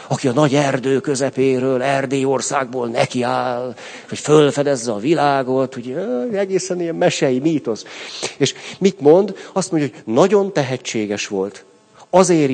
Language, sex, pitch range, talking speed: Hungarian, male, 120-155 Hz, 125 wpm